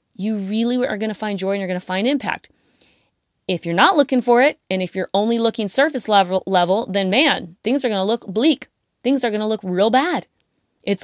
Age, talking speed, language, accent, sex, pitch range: 20-39, 235 wpm, English, American, female, 180-230 Hz